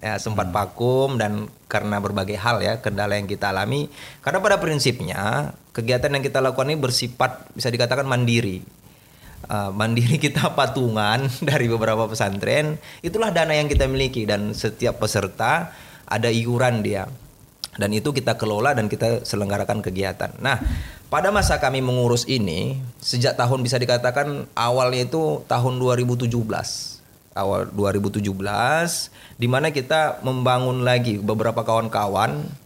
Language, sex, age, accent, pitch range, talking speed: Indonesian, male, 30-49, native, 105-135 Hz, 130 wpm